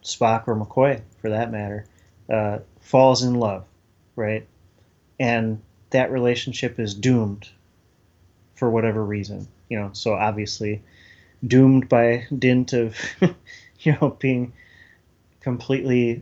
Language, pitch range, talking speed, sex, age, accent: English, 105-125 Hz, 115 wpm, male, 30-49, American